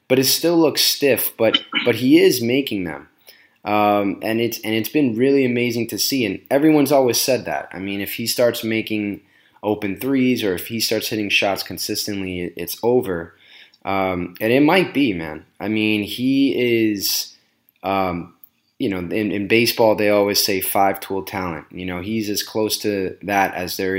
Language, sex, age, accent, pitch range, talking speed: English, male, 20-39, American, 95-115 Hz, 185 wpm